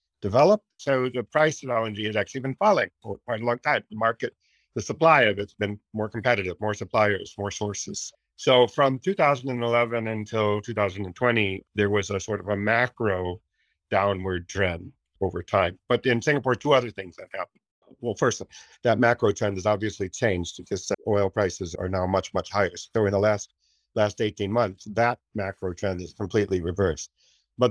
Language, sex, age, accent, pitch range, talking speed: English, male, 50-69, American, 100-120 Hz, 180 wpm